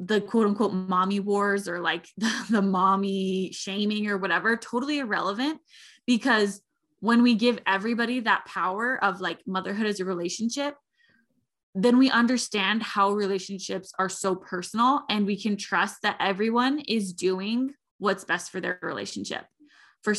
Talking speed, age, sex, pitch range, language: 150 wpm, 20-39, female, 195-255 Hz, English